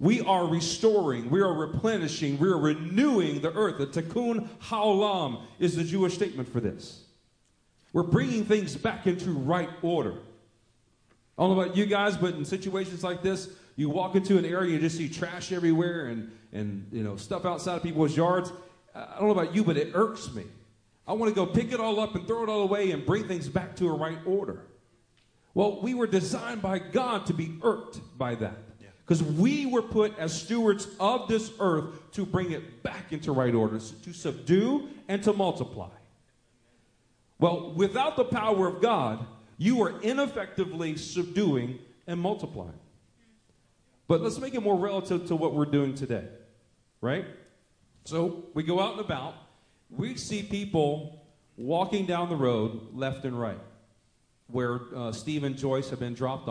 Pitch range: 125-195 Hz